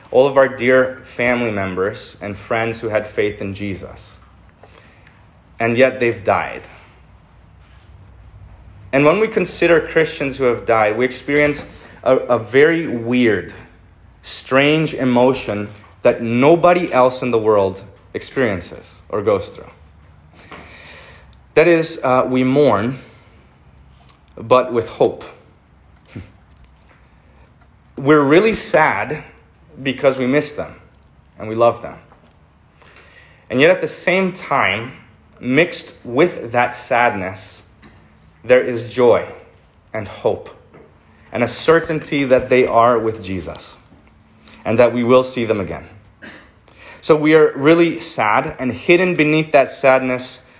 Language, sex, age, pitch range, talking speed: English, male, 30-49, 95-135 Hz, 120 wpm